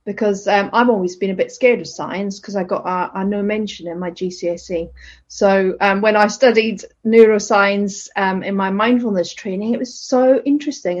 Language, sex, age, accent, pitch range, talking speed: English, female, 40-59, British, 185-225 Hz, 185 wpm